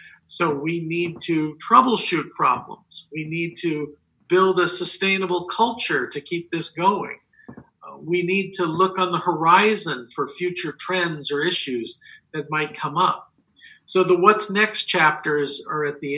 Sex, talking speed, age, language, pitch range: male, 150 wpm, 50-69, English, 155-185 Hz